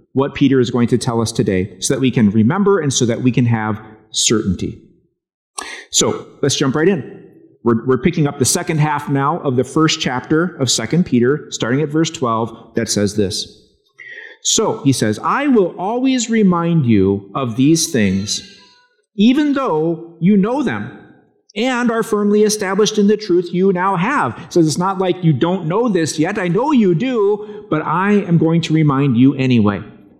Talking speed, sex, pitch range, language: 185 wpm, male, 125-190 Hz, English